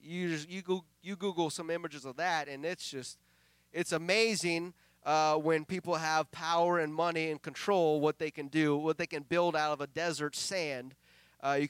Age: 30-49